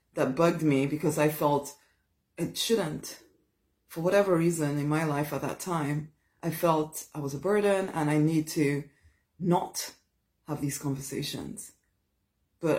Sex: female